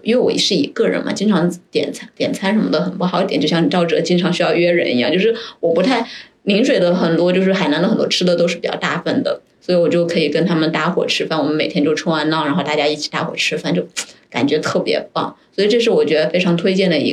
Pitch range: 170-215 Hz